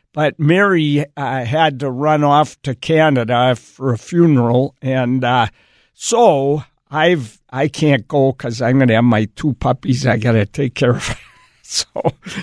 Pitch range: 125-155 Hz